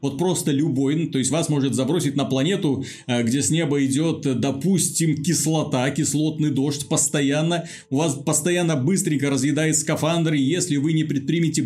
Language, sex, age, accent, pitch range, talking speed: Russian, male, 30-49, native, 140-185 Hz, 155 wpm